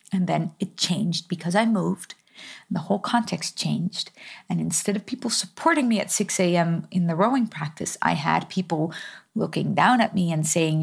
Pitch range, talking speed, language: 175-210 Hz, 190 wpm, English